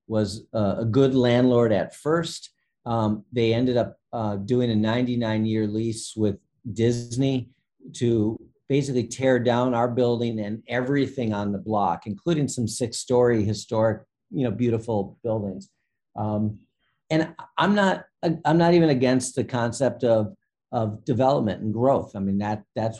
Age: 50-69